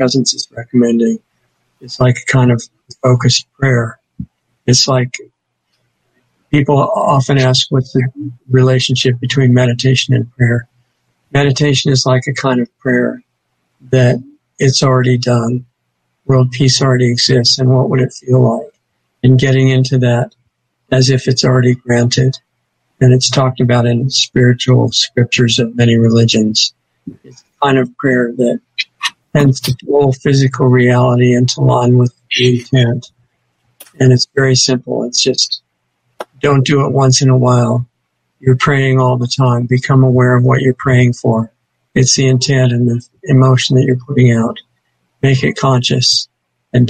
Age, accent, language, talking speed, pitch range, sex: 60-79, American, English, 150 wpm, 120-130 Hz, male